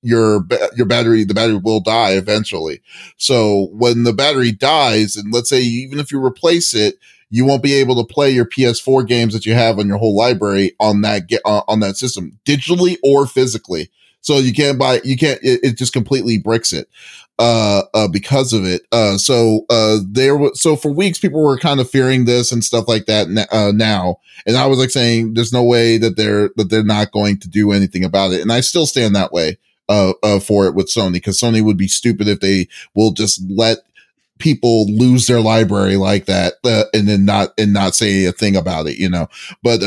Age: 30-49